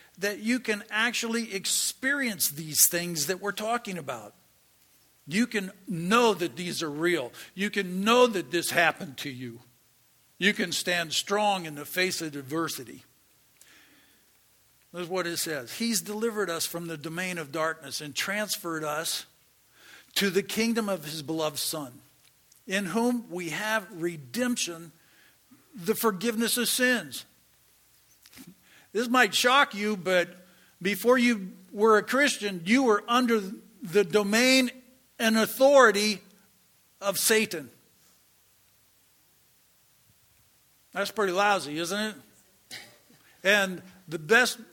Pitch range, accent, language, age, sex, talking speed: 170-220 Hz, American, English, 60-79, male, 125 wpm